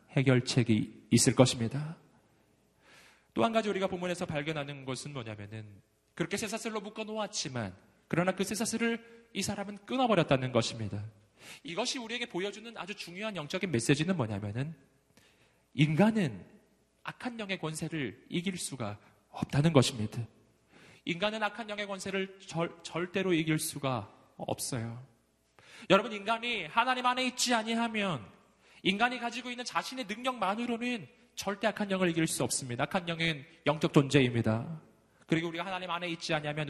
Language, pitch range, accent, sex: Korean, 125-190 Hz, native, male